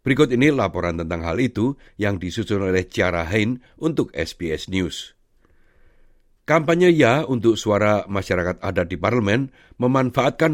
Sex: male